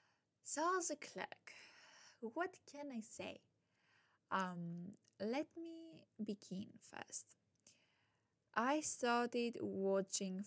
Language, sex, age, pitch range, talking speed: English, female, 20-39, 180-245 Hz, 85 wpm